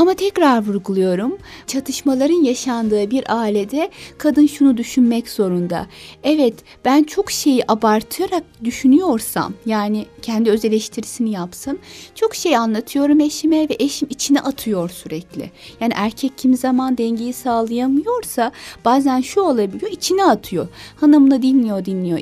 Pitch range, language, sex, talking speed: 215-290 Hz, Turkish, female, 120 wpm